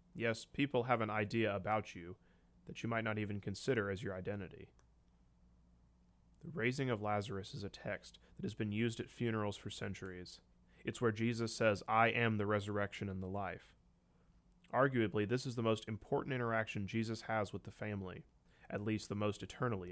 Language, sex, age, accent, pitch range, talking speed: English, male, 30-49, American, 95-115 Hz, 180 wpm